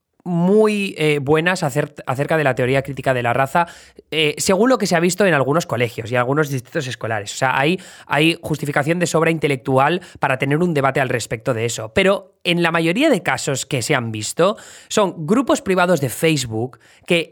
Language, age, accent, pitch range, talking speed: Spanish, 20-39, Spanish, 135-170 Hz, 200 wpm